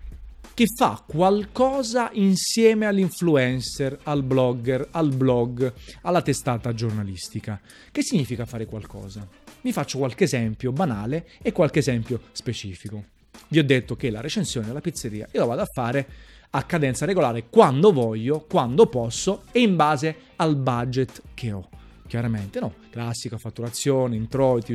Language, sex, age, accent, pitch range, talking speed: Italian, male, 30-49, native, 115-155 Hz, 140 wpm